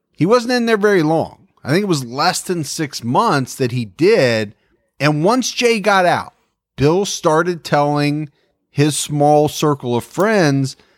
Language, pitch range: English, 130-180 Hz